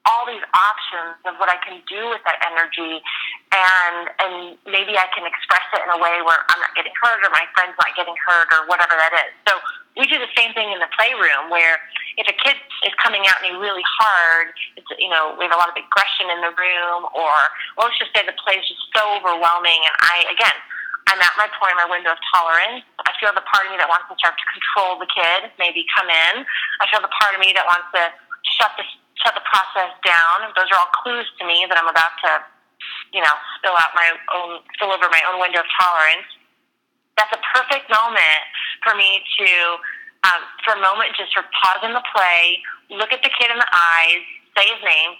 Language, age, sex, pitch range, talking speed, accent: English, 30-49, female, 170-215 Hz, 225 wpm, American